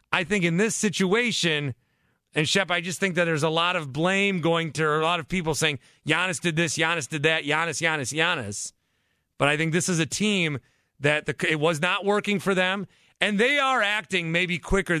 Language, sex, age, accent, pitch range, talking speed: English, male, 40-59, American, 155-205 Hz, 210 wpm